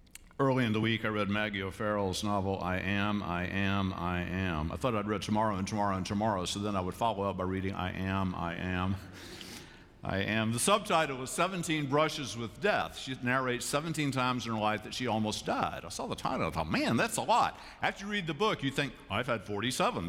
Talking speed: 225 wpm